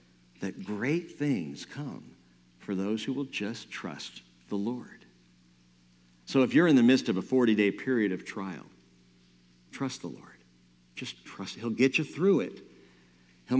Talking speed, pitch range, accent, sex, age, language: 155 wpm, 80-125 Hz, American, male, 60-79, English